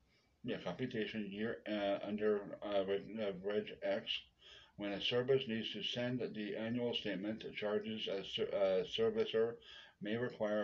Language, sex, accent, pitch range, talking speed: English, male, American, 95-120 Hz, 135 wpm